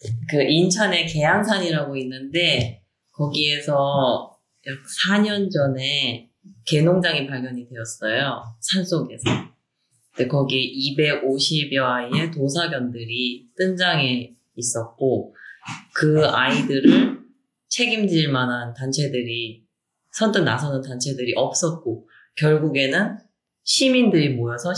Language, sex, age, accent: Korean, female, 30-49, native